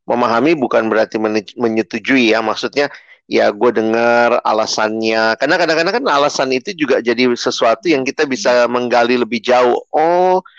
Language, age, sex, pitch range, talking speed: Indonesian, 30-49, male, 115-150 Hz, 140 wpm